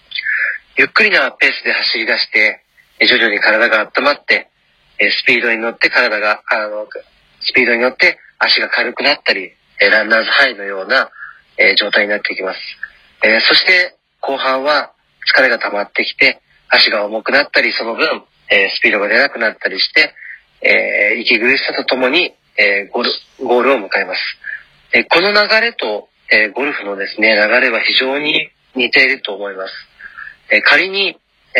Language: Japanese